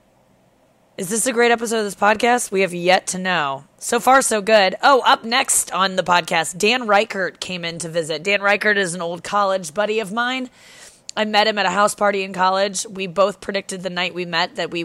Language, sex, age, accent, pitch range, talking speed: English, female, 20-39, American, 165-205 Hz, 225 wpm